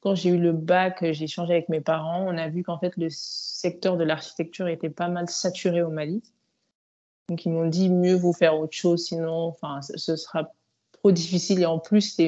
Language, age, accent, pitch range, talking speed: French, 20-39, French, 165-200 Hz, 210 wpm